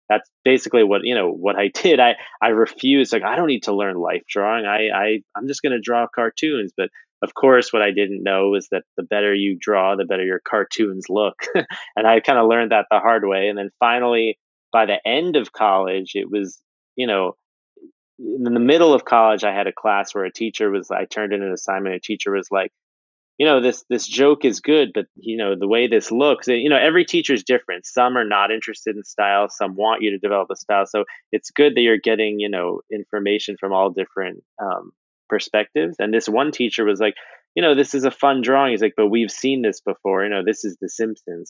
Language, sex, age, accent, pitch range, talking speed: English, male, 30-49, American, 100-115 Hz, 235 wpm